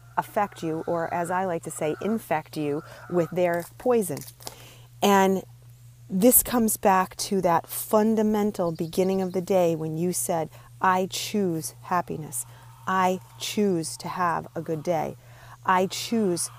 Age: 30-49